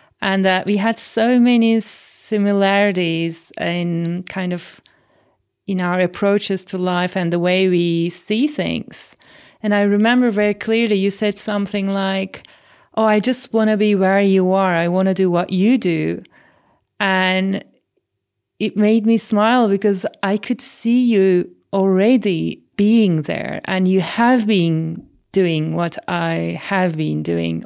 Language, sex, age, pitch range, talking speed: English, female, 30-49, 180-220 Hz, 150 wpm